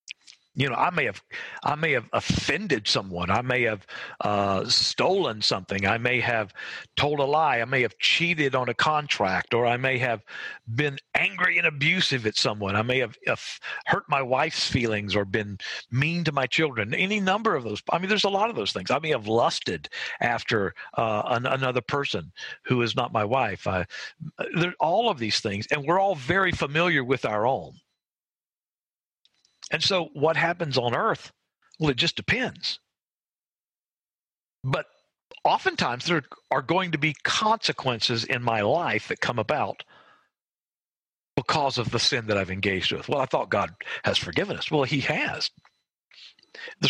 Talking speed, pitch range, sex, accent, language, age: 175 wpm, 115-165 Hz, male, American, English, 50-69